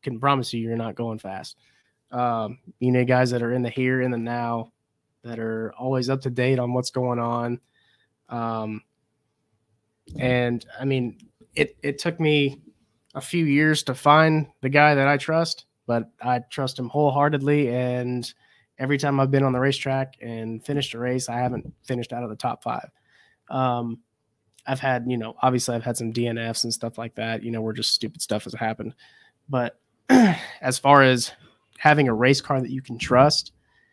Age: 20-39